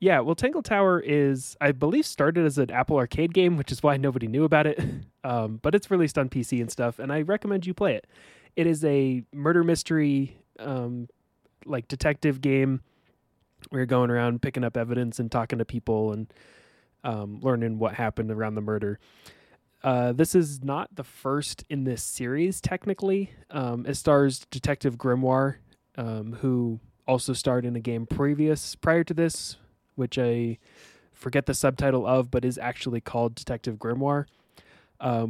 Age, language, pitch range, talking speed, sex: 20-39, English, 120-145 Hz, 170 wpm, male